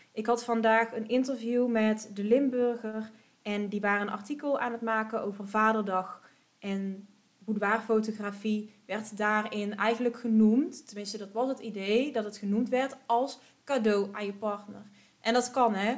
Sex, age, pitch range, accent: female, 20-39, 205-235 Hz, Dutch